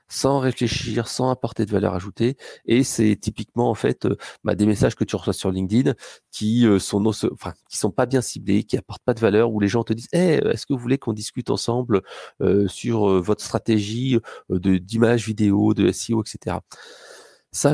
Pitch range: 105-125 Hz